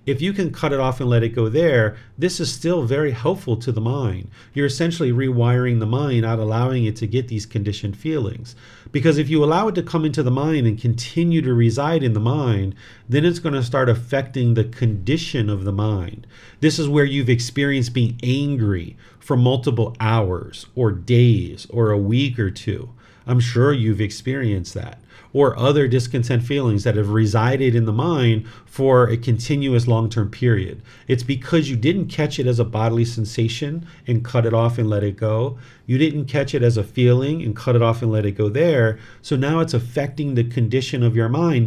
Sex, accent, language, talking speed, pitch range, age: male, American, English, 200 wpm, 115-140 Hz, 40-59